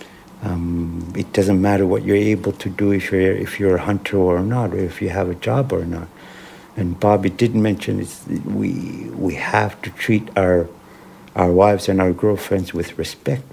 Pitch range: 90-105 Hz